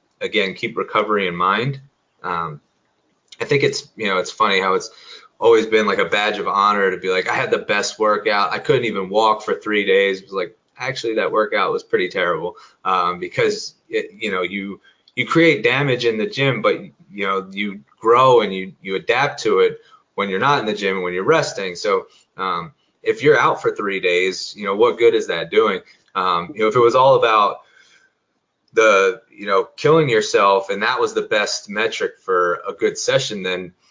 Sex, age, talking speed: male, 20-39, 210 wpm